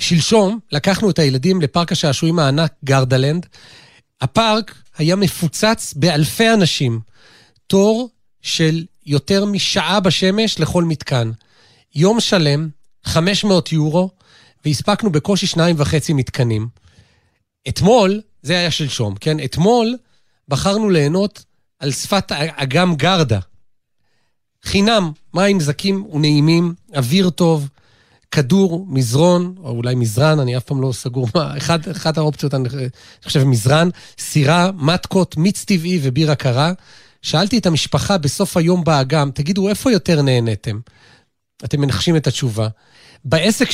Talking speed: 115 wpm